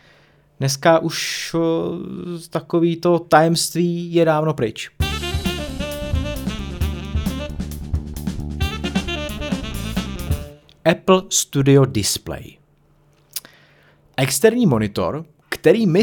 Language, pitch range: Czech, 115-150 Hz